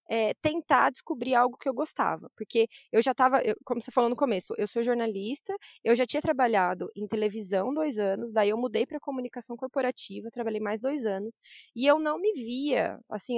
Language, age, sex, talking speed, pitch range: Portuguese, 20-39, female, 195 wpm, 215-275 Hz